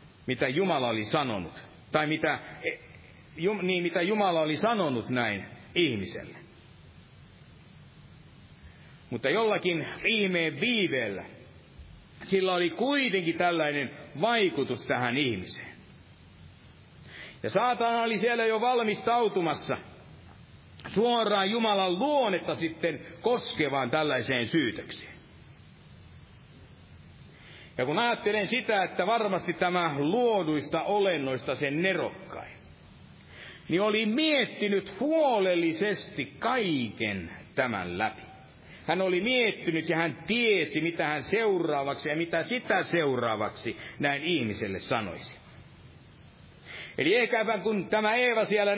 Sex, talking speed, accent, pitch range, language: male, 95 wpm, native, 160-225 Hz, Finnish